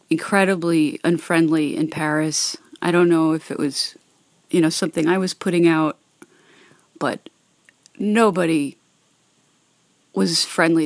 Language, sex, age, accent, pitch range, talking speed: English, female, 30-49, American, 160-195 Hz, 115 wpm